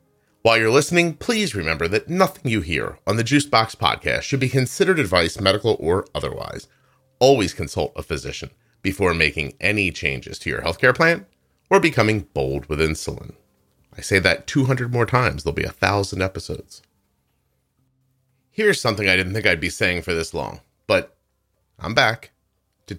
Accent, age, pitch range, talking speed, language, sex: American, 30-49, 85-125 Hz, 165 wpm, English, male